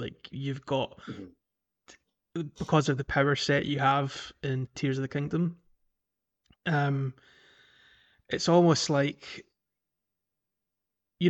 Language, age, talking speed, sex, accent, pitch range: English, 20-39, 105 wpm, male, British, 125-140 Hz